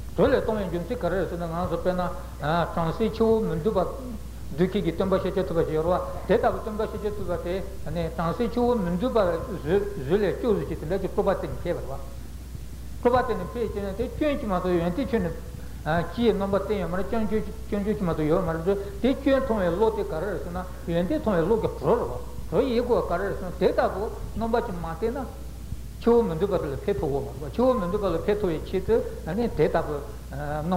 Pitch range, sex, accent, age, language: 170-225 Hz, male, Indian, 60-79, Italian